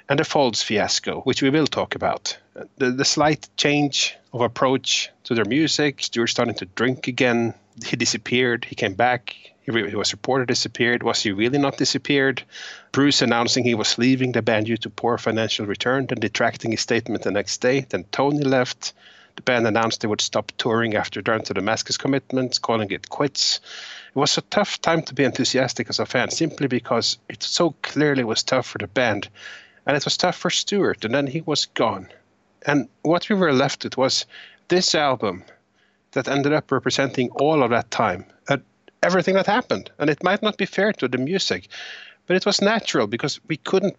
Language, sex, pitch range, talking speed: English, male, 115-150 Hz, 200 wpm